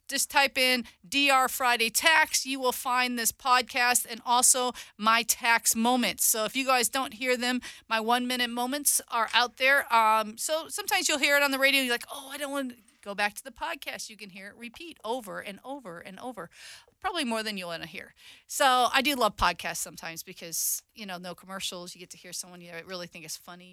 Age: 40-59